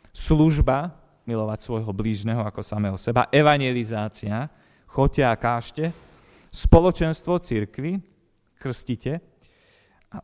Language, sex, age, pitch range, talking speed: Slovak, male, 40-59, 100-140 Hz, 90 wpm